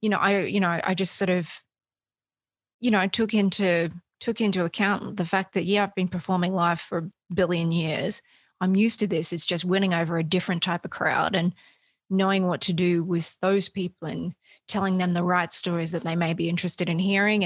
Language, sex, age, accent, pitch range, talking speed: English, female, 20-39, Australian, 175-205 Hz, 215 wpm